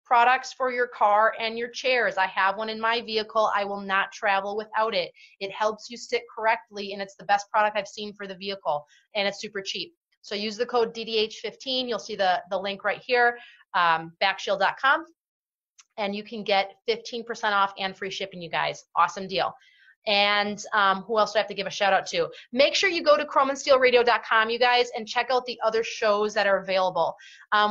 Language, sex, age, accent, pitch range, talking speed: English, female, 30-49, American, 195-235 Hz, 210 wpm